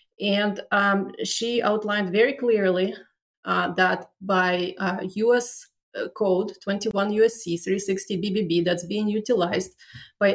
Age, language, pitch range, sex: 30-49, English, 185-220 Hz, female